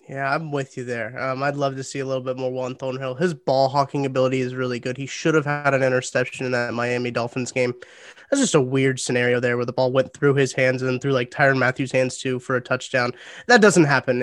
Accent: American